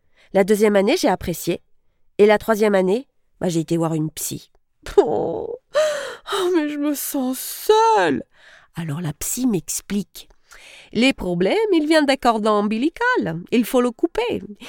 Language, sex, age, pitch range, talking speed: French, female, 30-49, 190-275 Hz, 165 wpm